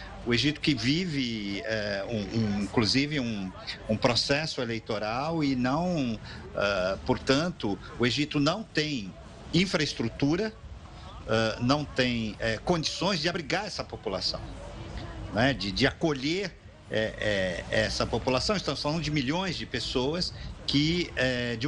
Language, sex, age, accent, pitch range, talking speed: Portuguese, male, 50-69, Brazilian, 110-160 Hz, 105 wpm